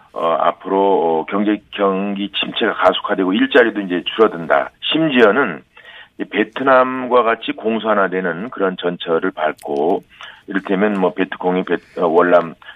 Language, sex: Korean, male